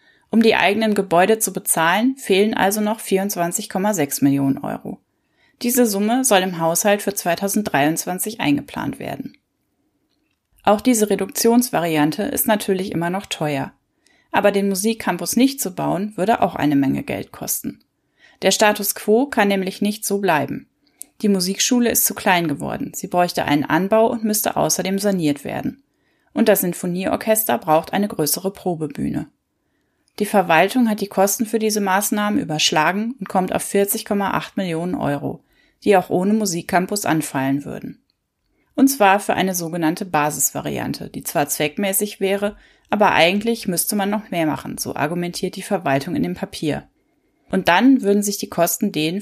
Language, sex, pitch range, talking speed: German, female, 170-215 Hz, 150 wpm